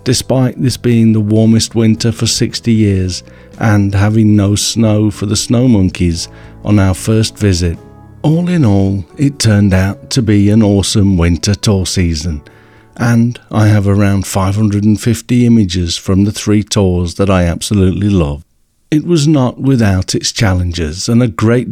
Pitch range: 95-115 Hz